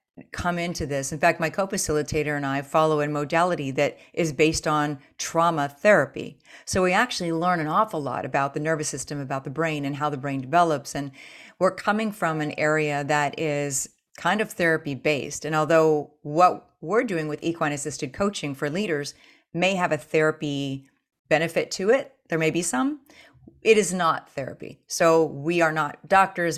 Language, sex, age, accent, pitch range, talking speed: English, female, 30-49, American, 145-170 Hz, 180 wpm